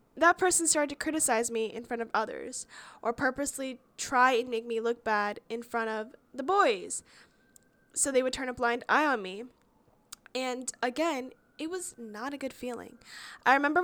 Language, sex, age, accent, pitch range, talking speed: English, female, 10-29, American, 220-260 Hz, 180 wpm